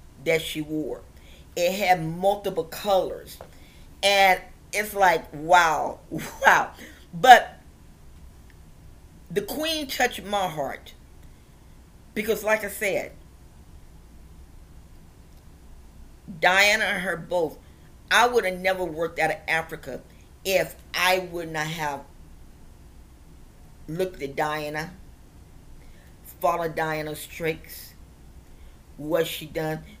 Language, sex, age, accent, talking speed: English, female, 40-59, American, 95 wpm